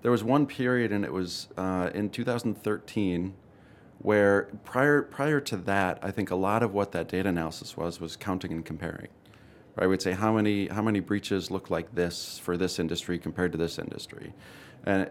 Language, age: English, 30-49